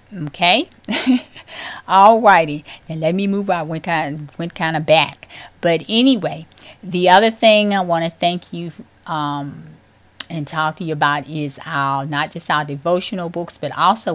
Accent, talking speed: American, 165 wpm